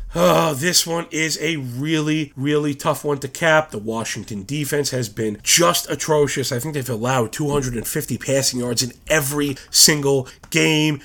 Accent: American